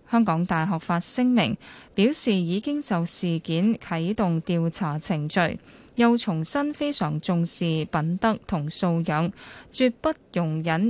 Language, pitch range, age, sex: Chinese, 165-235 Hz, 10-29, female